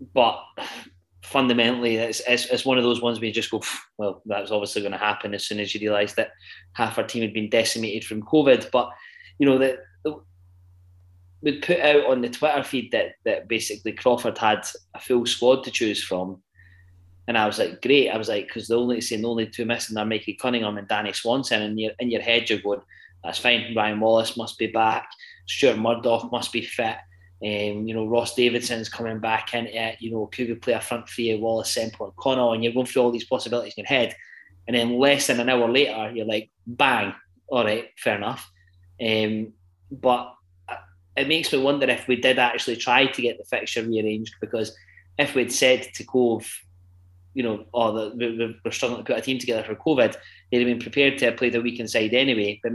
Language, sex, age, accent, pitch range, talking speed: English, male, 20-39, British, 105-120 Hz, 215 wpm